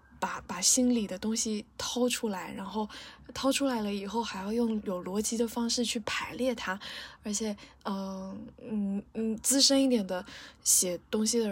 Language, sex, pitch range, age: Chinese, female, 200-240 Hz, 10-29